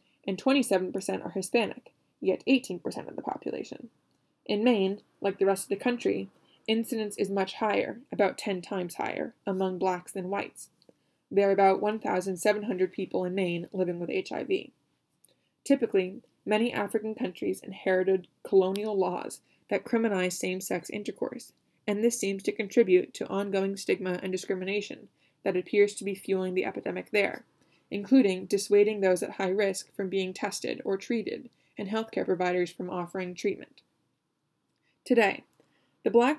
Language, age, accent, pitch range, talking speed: English, 20-39, American, 185-220 Hz, 145 wpm